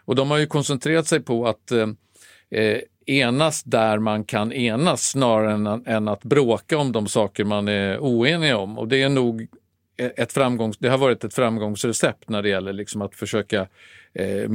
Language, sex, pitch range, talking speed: Swedish, male, 110-135 Hz, 180 wpm